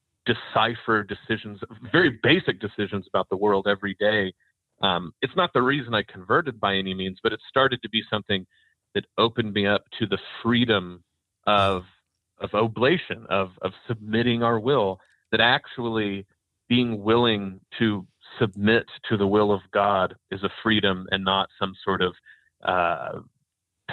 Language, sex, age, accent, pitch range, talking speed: English, male, 30-49, American, 95-110 Hz, 155 wpm